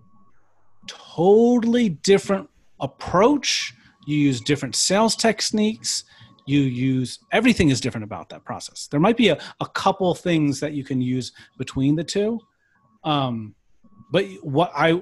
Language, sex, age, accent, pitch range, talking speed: English, male, 30-49, American, 120-170 Hz, 135 wpm